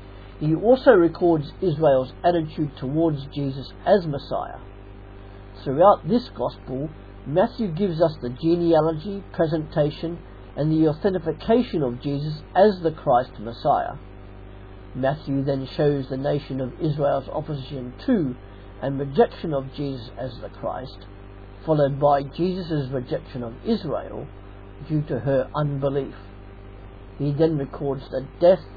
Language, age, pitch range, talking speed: English, 60-79, 100-155 Hz, 120 wpm